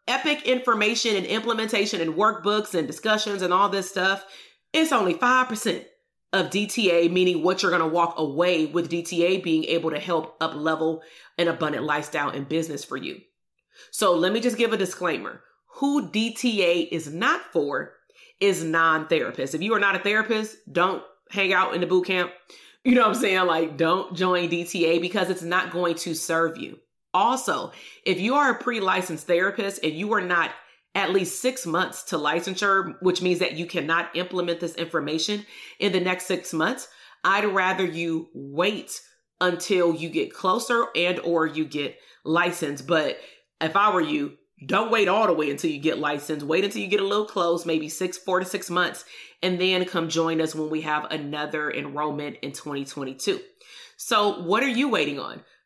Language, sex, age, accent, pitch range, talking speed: English, female, 30-49, American, 165-200 Hz, 185 wpm